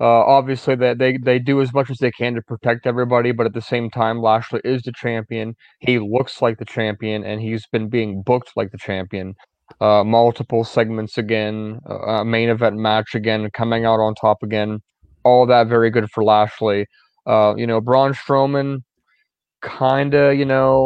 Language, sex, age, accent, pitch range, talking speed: English, male, 20-39, American, 115-135 Hz, 195 wpm